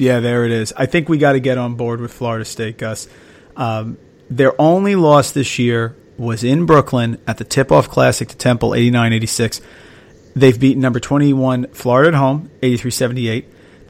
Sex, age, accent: male, 40-59, American